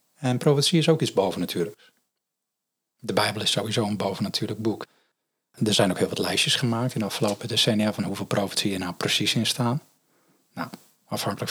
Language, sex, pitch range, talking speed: Dutch, male, 105-120 Hz, 175 wpm